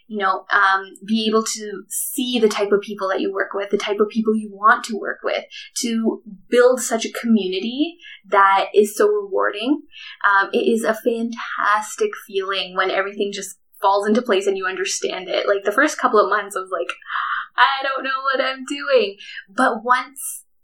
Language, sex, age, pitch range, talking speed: English, female, 10-29, 200-280 Hz, 190 wpm